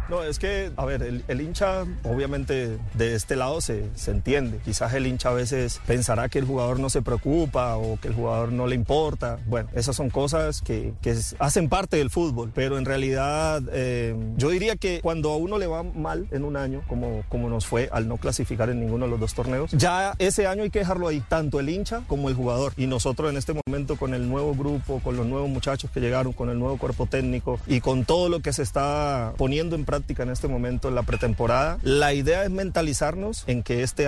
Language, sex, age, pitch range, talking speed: Spanish, male, 30-49, 120-145 Hz, 230 wpm